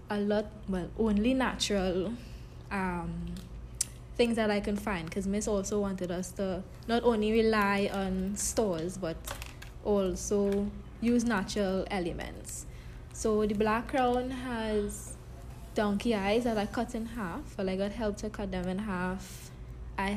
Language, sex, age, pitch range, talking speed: English, female, 20-39, 190-220 Hz, 145 wpm